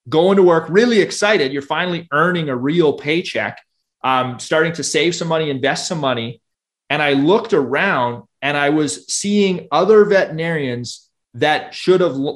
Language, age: English, 30-49